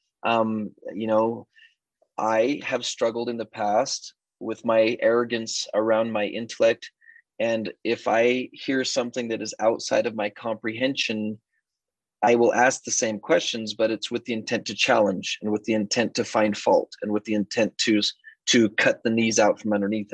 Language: English